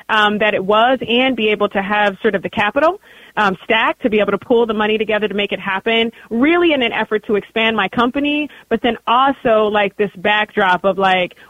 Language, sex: English, female